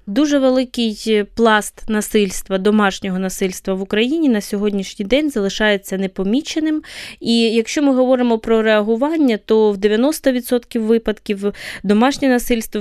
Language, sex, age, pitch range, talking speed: Ukrainian, female, 20-39, 195-245 Hz, 115 wpm